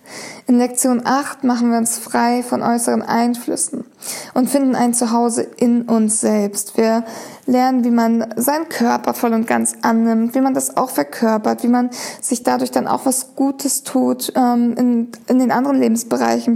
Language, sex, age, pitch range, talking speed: English, female, 20-39, 225-250 Hz, 170 wpm